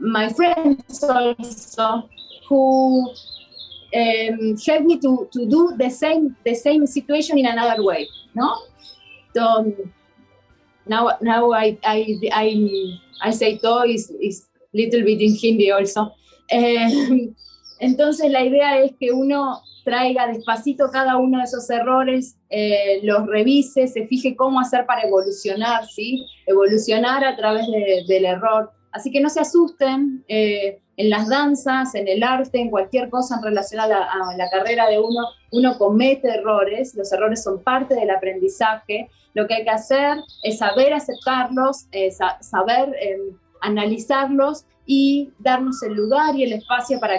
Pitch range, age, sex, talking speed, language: 210-260 Hz, 20-39, female, 155 wpm, Hindi